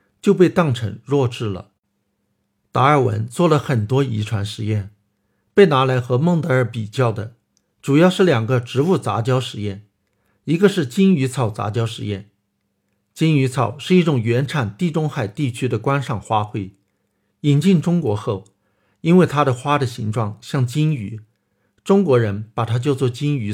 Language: Chinese